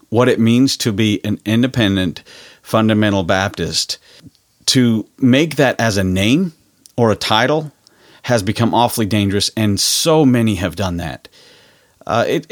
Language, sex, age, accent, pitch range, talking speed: English, male, 40-59, American, 100-125 Hz, 140 wpm